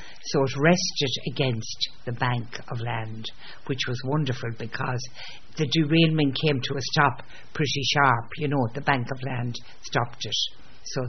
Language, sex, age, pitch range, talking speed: English, female, 60-79, 125-160 Hz, 155 wpm